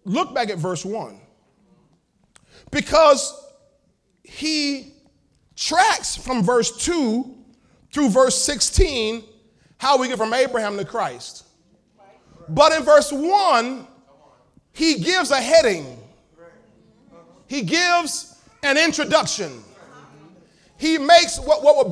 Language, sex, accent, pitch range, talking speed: English, male, American, 265-355 Hz, 105 wpm